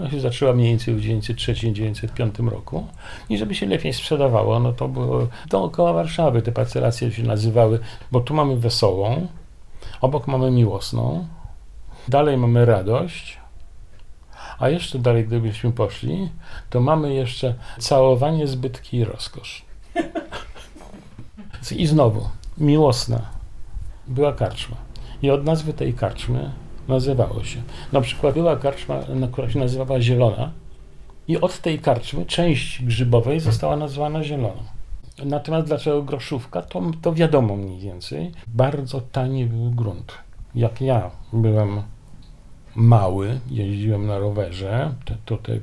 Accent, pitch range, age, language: native, 110-140 Hz, 50-69, Polish